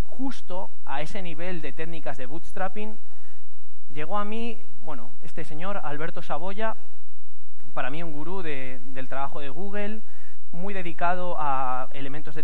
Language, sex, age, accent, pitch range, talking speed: Spanish, male, 20-39, Spanish, 140-195 Hz, 140 wpm